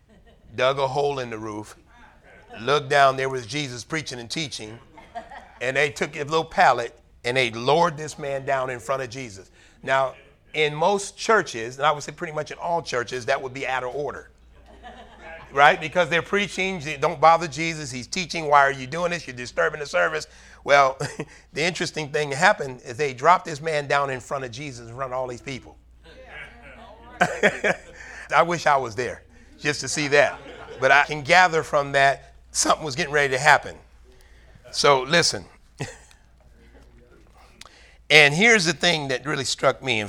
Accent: American